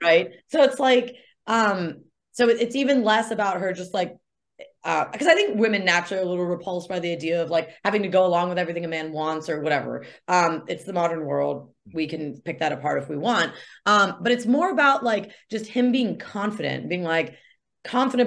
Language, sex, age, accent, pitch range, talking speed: English, female, 20-39, American, 170-220 Hz, 215 wpm